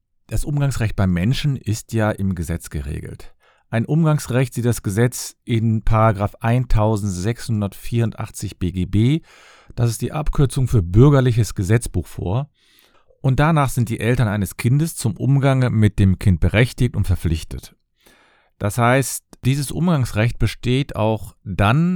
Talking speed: 130 wpm